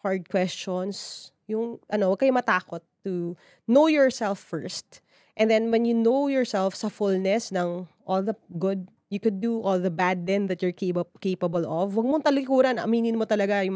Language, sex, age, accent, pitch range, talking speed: English, female, 20-39, Filipino, 175-220 Hz, 180 wpm